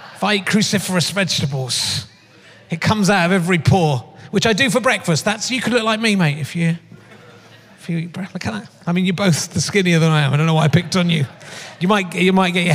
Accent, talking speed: British, 255 wpm